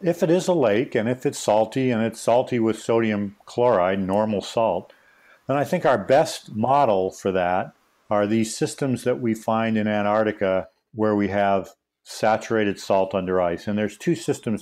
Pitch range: 95-115 Hz